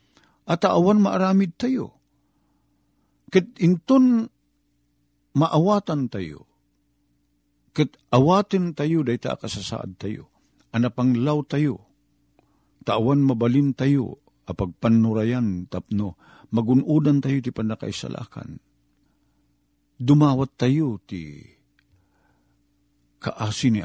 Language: Filipino